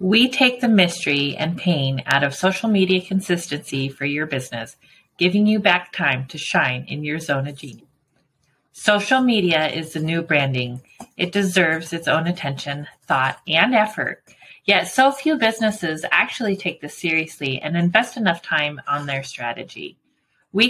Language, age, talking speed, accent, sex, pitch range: English, 30-49, 160 wpm, American, female, 155-210 Hz